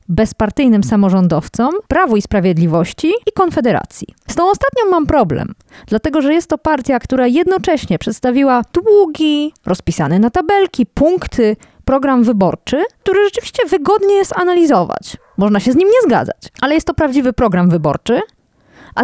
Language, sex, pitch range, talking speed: Polish, female, 200-315 Hz, 140 wpm